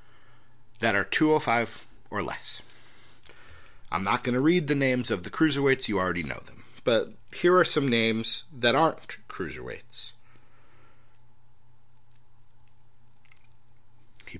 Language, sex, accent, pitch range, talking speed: English, male, American, 115-130 Hz, 115 wpm